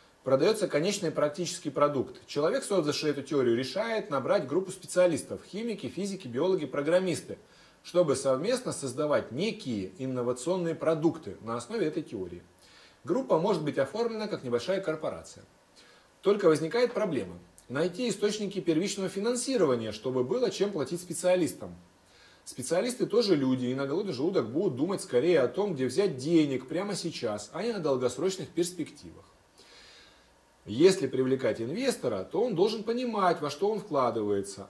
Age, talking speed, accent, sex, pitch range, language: 30-49, 135 wpm, native, male, 125-190 Hz, Russian